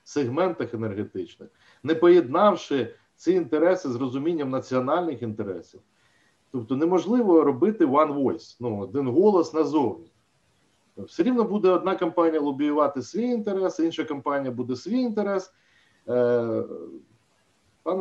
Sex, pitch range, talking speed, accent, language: male, 130-195 Hz, 115 wpm, native, Ukrainian